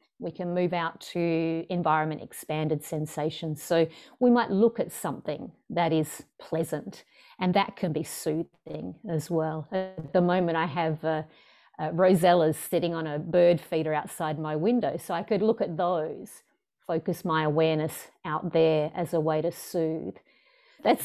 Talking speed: 165 wpm